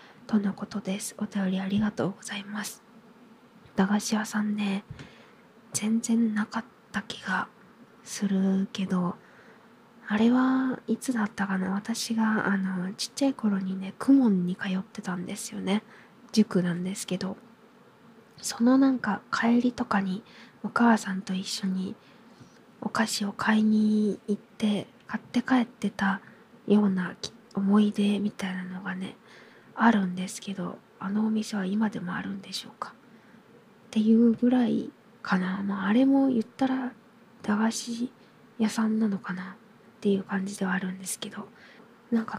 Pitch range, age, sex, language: 195-230 Hz, 20-39, female, Japanese